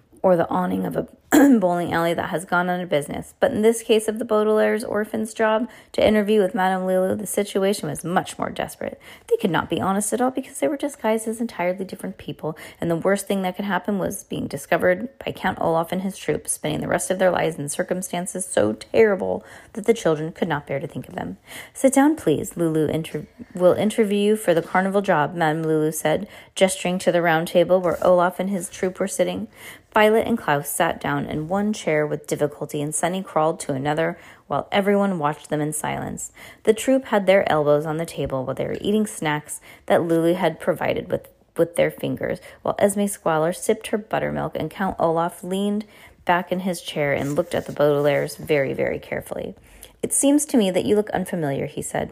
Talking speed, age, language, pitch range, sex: 210 wpm, 30-49, English, 160-215 Hz, female